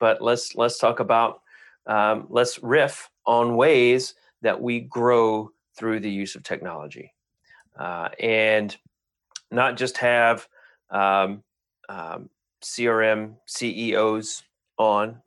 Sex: male